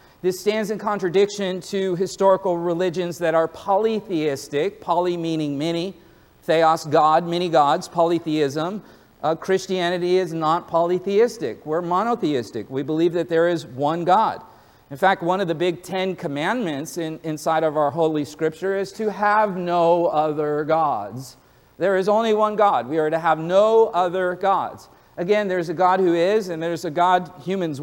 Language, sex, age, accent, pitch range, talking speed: English, male, 40-59, American, 160-195 Hz, 160 wpm